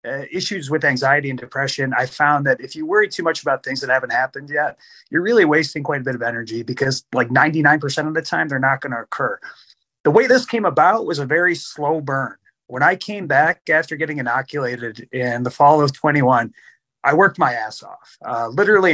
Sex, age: male, 30-49